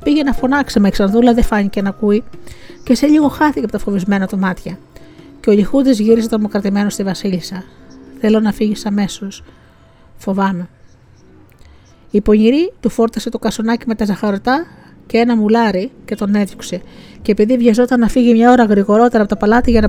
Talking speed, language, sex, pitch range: 175 wpm, Greek, female, 200-245 Hz